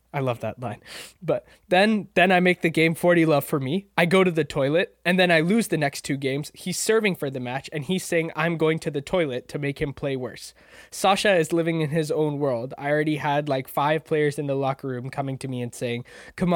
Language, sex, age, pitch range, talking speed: English, male, 20-39, 135-165 Hz, 250 wpm